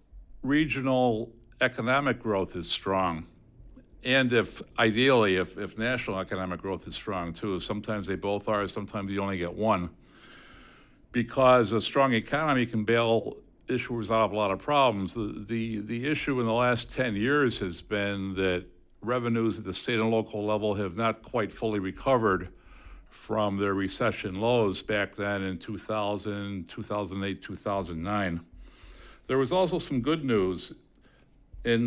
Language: English